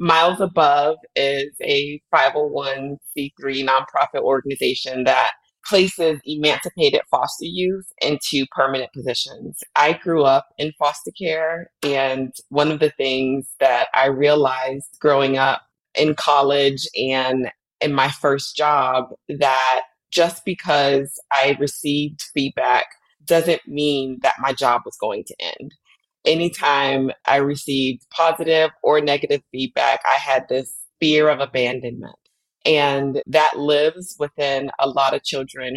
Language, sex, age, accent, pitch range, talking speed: English, female, 30-49, American, 135-155 Hz, 125 wpm